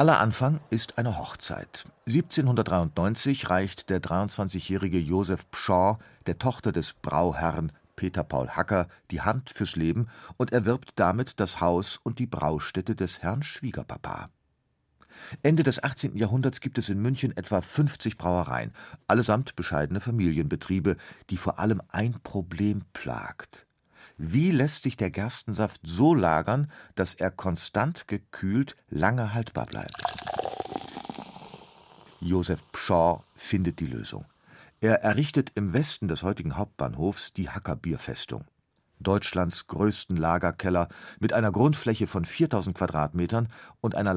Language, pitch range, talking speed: German, 90-120 Hz, 125 wpm